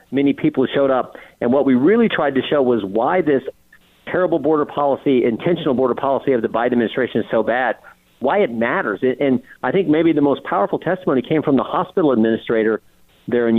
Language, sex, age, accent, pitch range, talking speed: English, male, 50-69, American, 130-180 Hz, 200 wpm